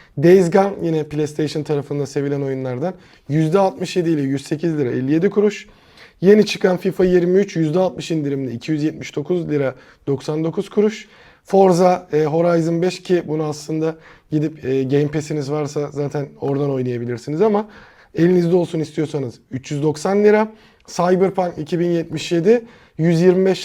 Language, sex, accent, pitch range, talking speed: Turkish, male, native, 150-185 Hz, 115 wpm